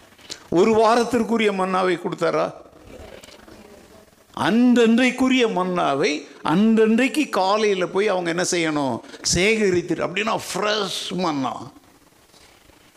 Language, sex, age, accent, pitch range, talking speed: Tamil, male, 50-69, native, 180-235 Hz, 60 wpm